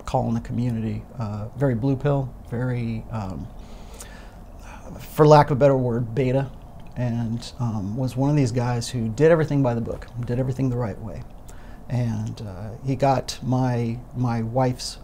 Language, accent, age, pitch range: English, American, 40-59, 110-130 Hz